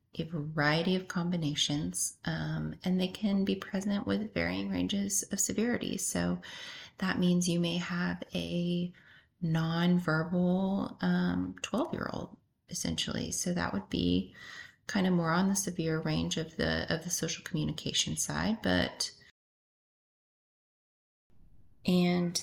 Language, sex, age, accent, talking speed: English, female, 30-49, American, 130 wpm